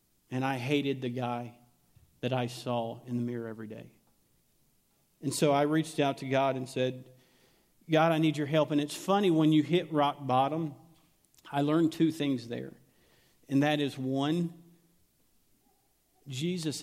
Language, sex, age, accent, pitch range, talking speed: English, male, 50-69, American, 130-155 Hz, 160 wpm